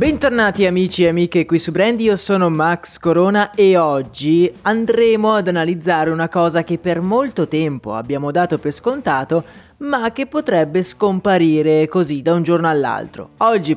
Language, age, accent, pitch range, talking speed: Italian, 30-49, native, 150-210 Hz, 155 wpm